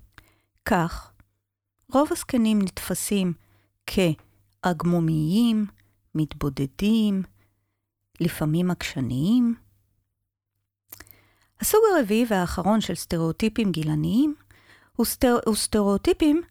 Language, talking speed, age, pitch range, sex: Hebrew, 65 wpm, 30-49, 145-230 Hz, female